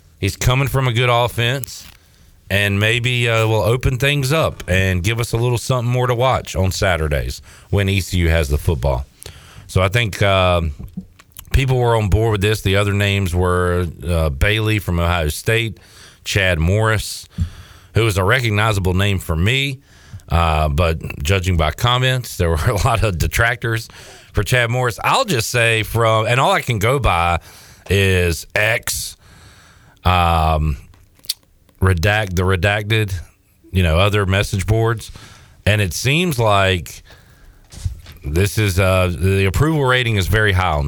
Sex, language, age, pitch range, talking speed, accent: male, English, 40-59, 90-115 Hz, 160 wpm, American